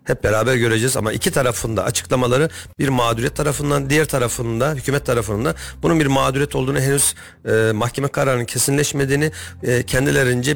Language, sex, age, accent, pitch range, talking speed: Turkish, male, 40-59, native, 115-140 Hz, 140 wpm